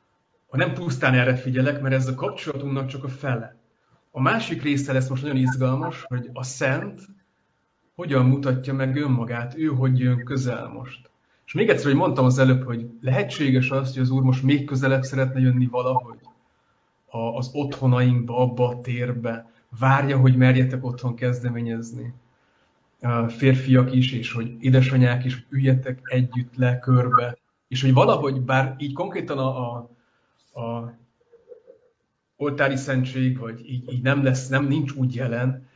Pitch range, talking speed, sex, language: 125-140 Hz, 150 wpm, male, Hungarian